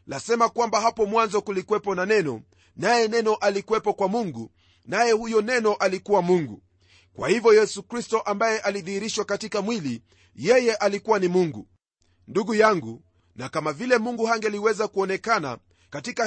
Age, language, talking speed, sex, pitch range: 40-59, Swahili, 140 wpm, male, 140-225 Hz